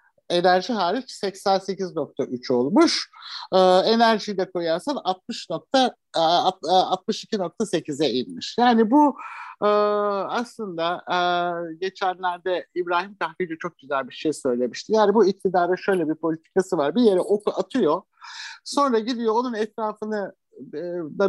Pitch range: 170-235 Hz